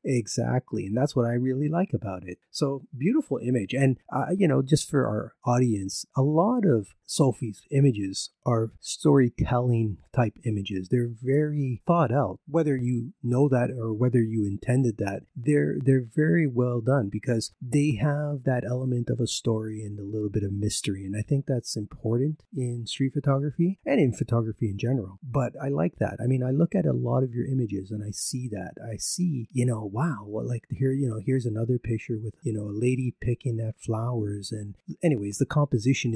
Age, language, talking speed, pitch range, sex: 30-49, English, 195 wpm, 110-140 Hz, male